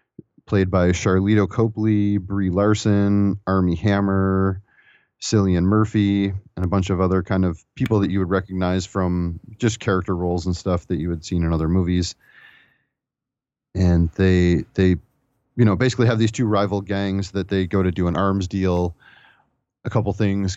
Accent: American